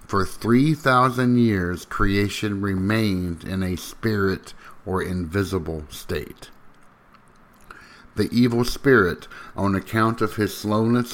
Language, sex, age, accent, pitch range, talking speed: English, male, 50-69, American, 95-115 Hz, 110 wpm